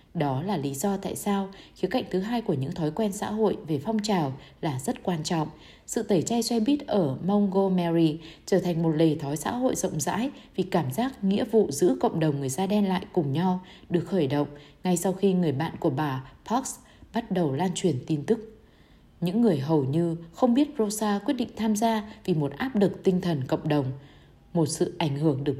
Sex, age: female, 20-39